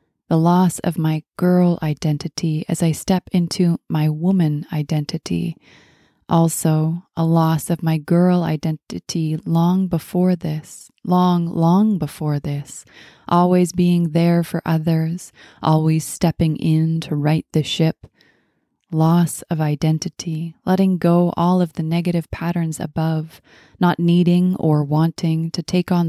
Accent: American